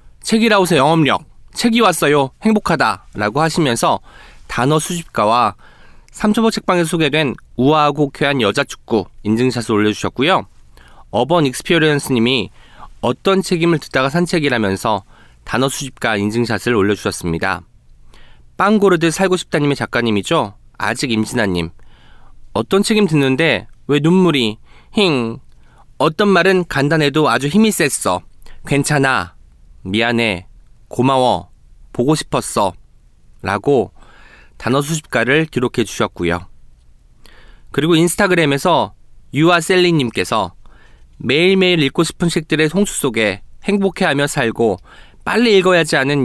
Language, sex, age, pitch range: Korean, male, 20-39, 115-175 Hz